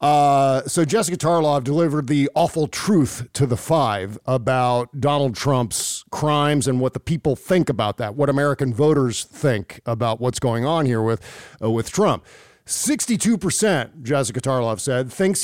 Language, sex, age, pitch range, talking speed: English, male, 50-69, 130-175 Hz, 165 wpm